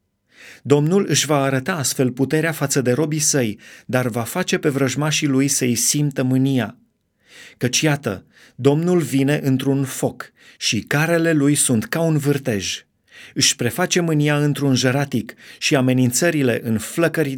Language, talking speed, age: Romanian, 140 wpm, 30-49